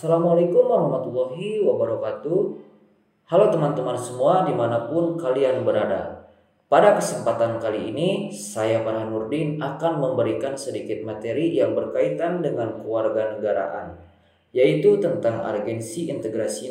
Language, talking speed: Indonesian, 105 wpm